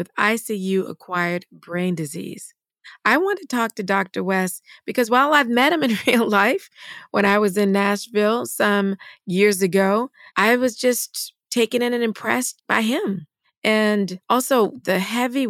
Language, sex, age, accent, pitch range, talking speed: English, female, 40-59, American, 185-230 Hz, 155 wpm